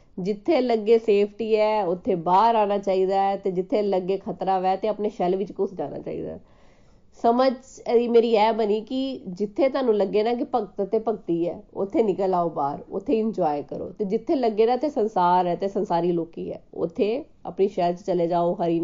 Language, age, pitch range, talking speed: Punjabi, 20-39, 185-225 Hz, 195 wpm